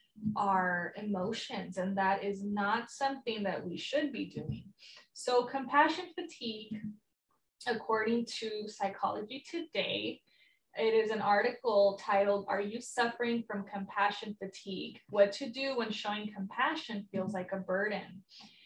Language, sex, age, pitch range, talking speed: English, female, 10-29, 195-240 Hz, 130 wpm